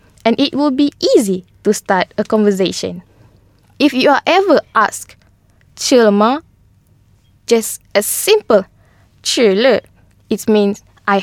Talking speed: 120 wpm